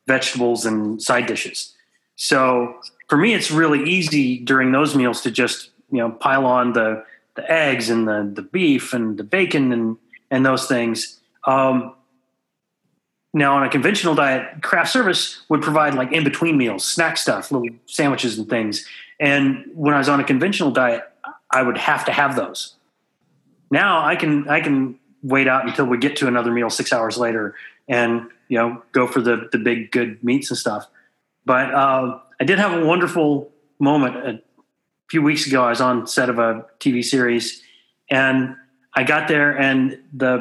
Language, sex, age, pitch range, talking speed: English, male, 30-49, 125-150 Hz, 180 wpm